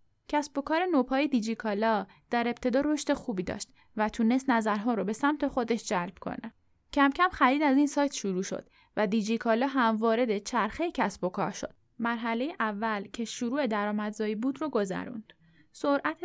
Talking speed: 155 wpm